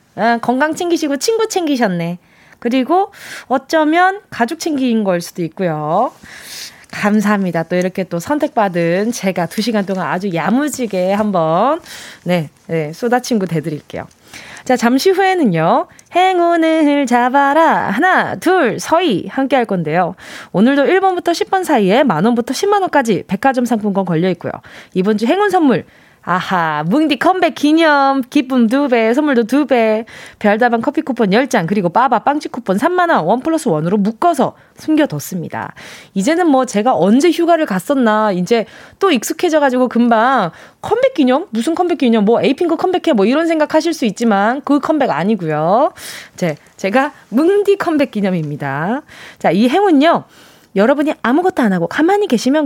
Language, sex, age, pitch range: Korean, female, 20-39, 200-315 Hz